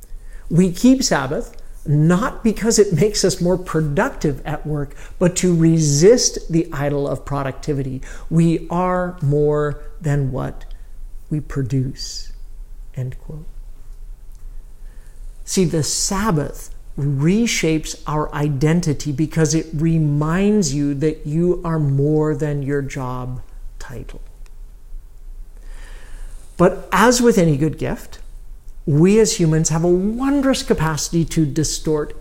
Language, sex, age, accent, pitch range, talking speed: English, male, 50-69, American, 145-185 Hz, 115 wpm